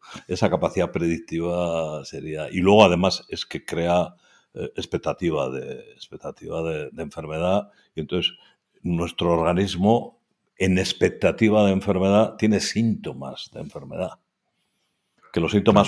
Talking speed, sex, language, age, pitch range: 115 wpm, male, Spanish, 60-79, 85-105 Hz